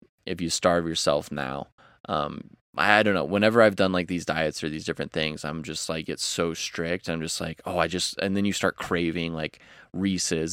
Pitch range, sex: 80-100 Hz, male